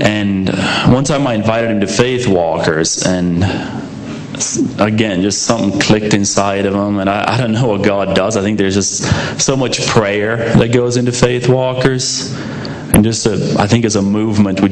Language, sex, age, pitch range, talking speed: English, male, 30-49, 95-115 Hz, 190 wpm